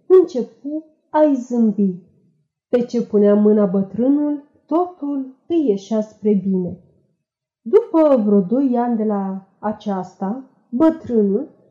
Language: Romanian